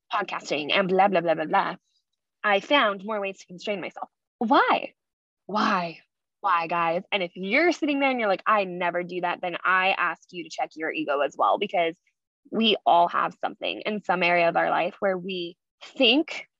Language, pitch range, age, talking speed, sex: English, 175-220 Hz, 10-29, 195 wpm, female